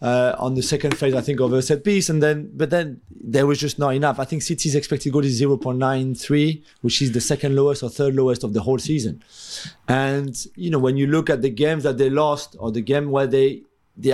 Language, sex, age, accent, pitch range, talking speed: English, male, 30-49, French, 130-155 Hz, 245 wpm